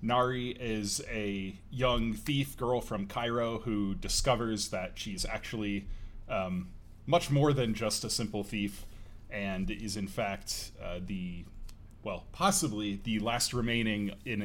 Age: 30-49